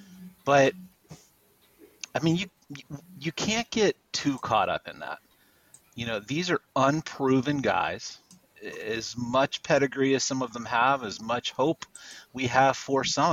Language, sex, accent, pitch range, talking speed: English, male, American, 115-155 Hz, 150 wpm